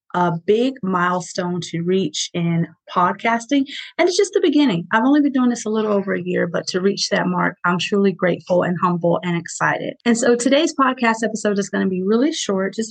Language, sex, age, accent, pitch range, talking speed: English, female, 30-49, American, 180-235 Hz, 210 wpm